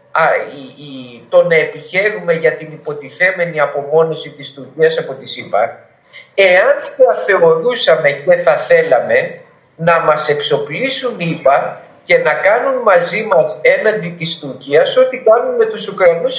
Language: Greek